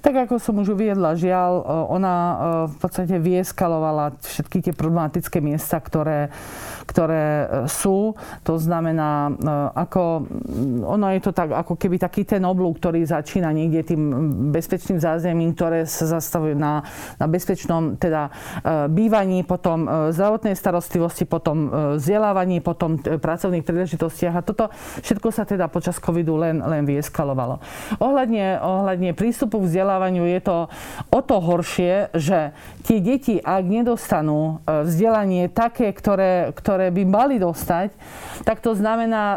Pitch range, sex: 160-195 Hz, female